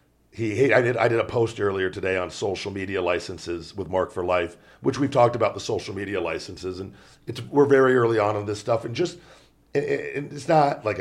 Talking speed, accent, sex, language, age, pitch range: 230 wpm, American, male, English, 40-59, 100-125 Hz